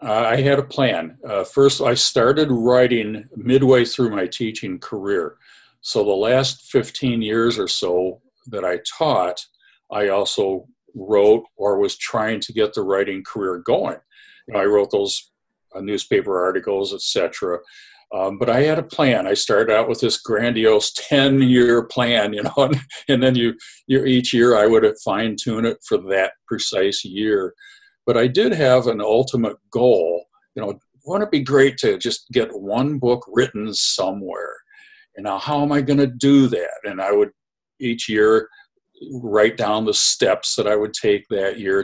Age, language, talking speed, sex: 50-69, English, 175 wpm, male